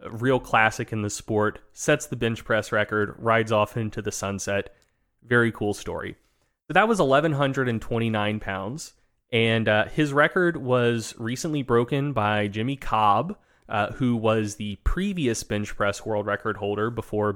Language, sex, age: English, male, 20-39